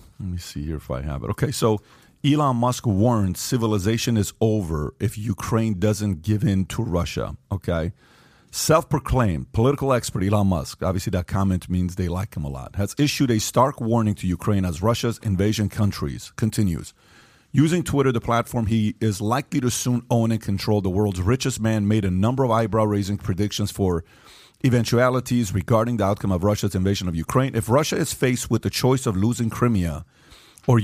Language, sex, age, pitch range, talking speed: English, male, 40-59, 100-125 Hz, 185 wpm